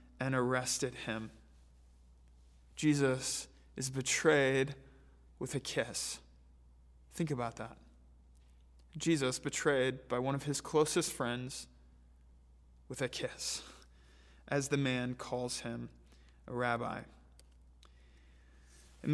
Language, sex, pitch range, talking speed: English, male, 120-145 Hz, 95 wpm